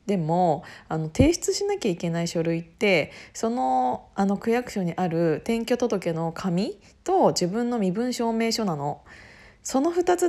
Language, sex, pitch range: Japanese, female, 180-280 Hz